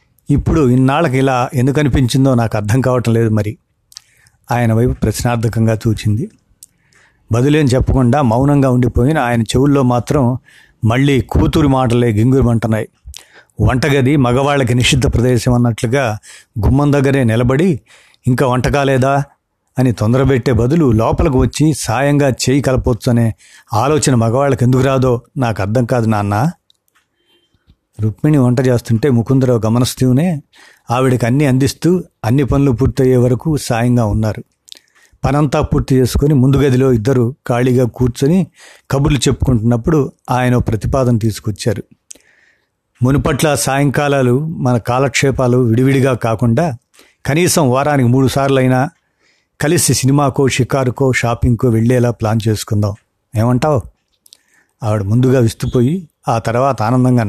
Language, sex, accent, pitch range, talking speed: Telugu, male, native, 120-140 Hz, 105 wpm